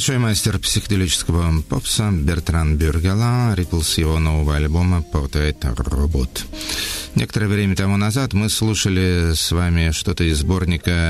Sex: male